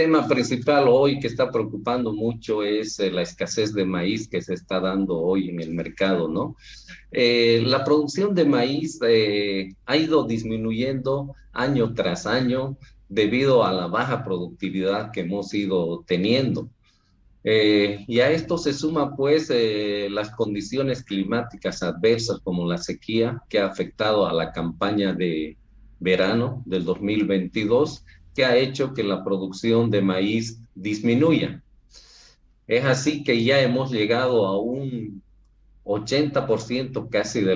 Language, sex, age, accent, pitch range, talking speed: Spanish, male, 50-69, Mexican, 95-135 Hz, 140 wpm